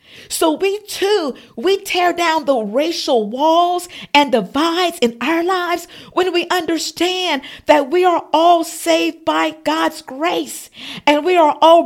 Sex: female